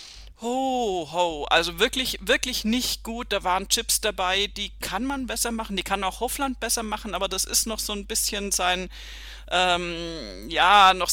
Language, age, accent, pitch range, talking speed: German, 40-59, German, 170-215 Hz, 180 wpm